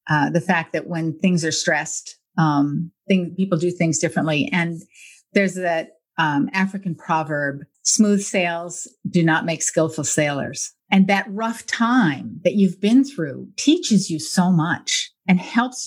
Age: 50-69